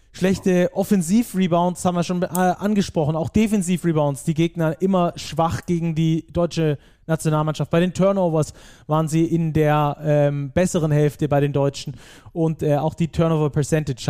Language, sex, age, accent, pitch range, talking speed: German, male, 20-39, German, 145-180 Hz, 145 wpm